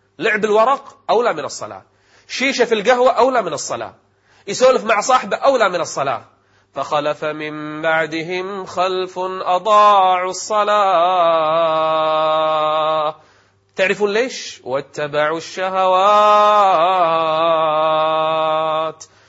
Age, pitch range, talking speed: 30-49, 150-205 Hz, 85 wpm